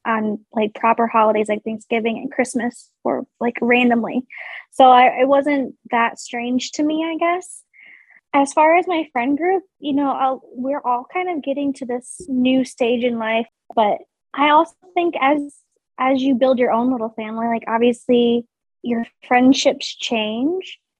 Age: 20-39